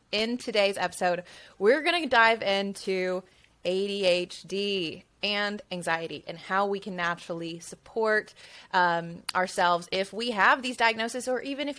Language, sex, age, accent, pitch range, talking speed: English, female, 20-39, American, 180-220 Hz, 135 wpm